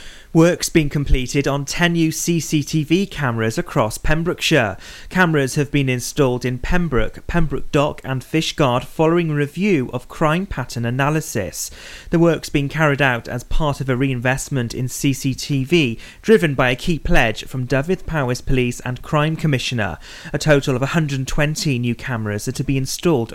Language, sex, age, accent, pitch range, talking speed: English, male, 30-49, British, 125-155 Hz, 155 wpm